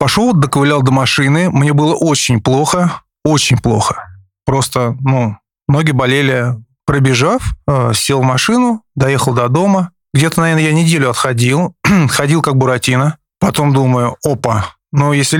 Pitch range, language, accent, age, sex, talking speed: 115-150 Hz, Russian, native, 20-39, male, 135 wpm